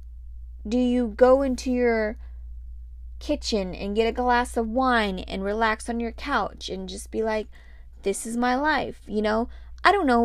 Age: 20-39